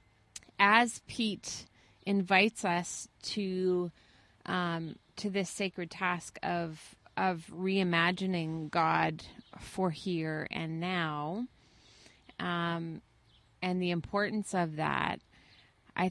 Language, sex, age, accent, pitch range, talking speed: English, female, 30-49, American, 150-185 Hz, 95 wpm